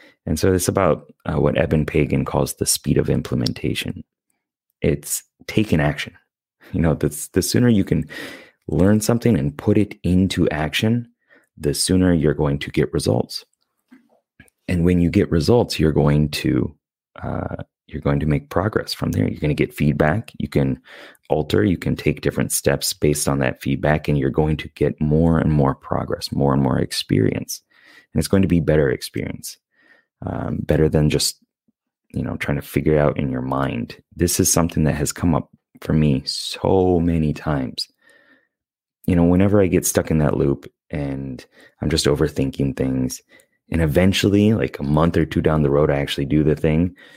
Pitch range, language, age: 75-95 Hz, English, 30-49